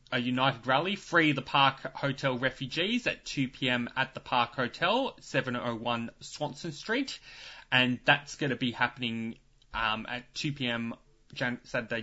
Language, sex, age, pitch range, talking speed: English, male, 20-39, 120-155 Hz, 145 wpm